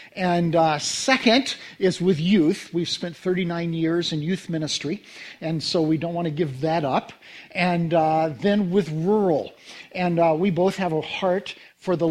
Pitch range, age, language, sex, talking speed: 165-220 Hz, 50-69, English, male, 180 wpm